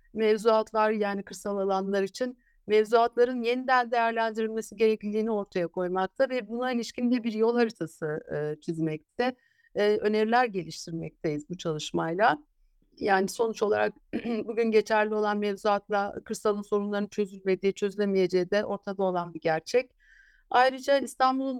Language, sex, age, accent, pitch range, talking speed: Turkish, female, 60-79, native, 195-235 Hz, 115 wpm